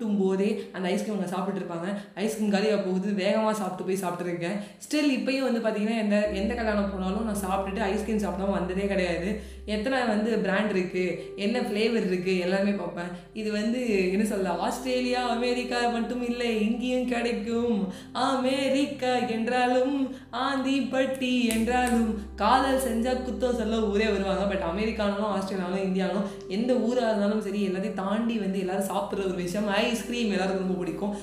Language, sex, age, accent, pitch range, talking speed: Tamil, female, 20-39, native, 190-240 Hz, 35 wpm